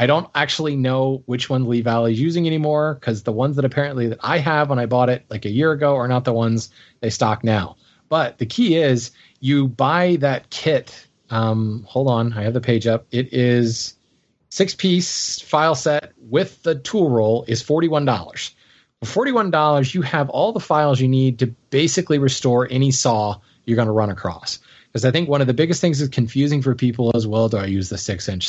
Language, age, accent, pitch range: English, 30-49, American, 115-150 Hz